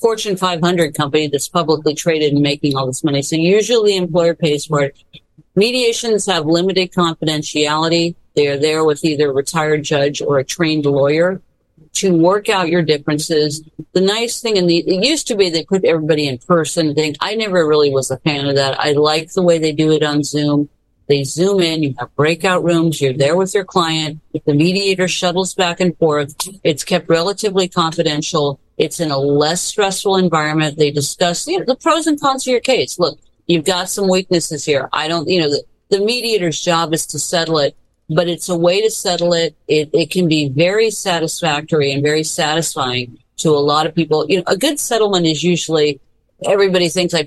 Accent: American